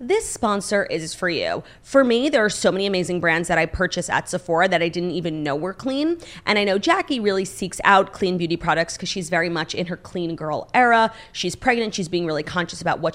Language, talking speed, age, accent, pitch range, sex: English, 235 wpm, 30-49, American, 170-220 Hz, female